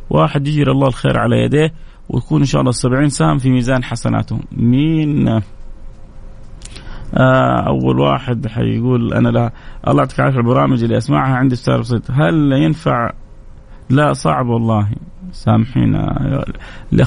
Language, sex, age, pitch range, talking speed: Arabic, male, 30-49, 110-145 Hz, 135 wpm